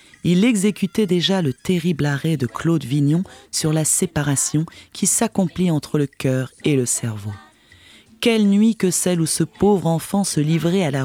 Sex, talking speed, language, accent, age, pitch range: female, 175 wpm, English, French, 30-49, 145-200 Hz